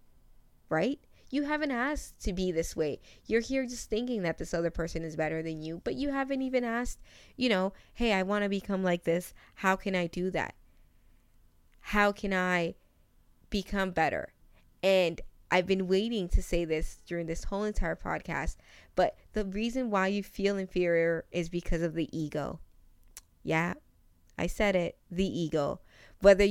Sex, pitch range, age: female, 160-195 Hz, 20-39